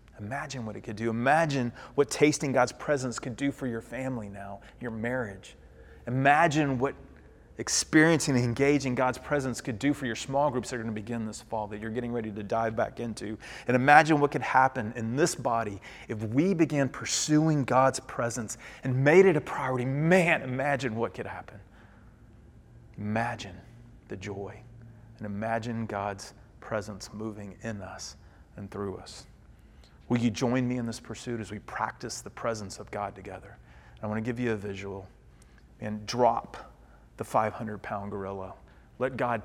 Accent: American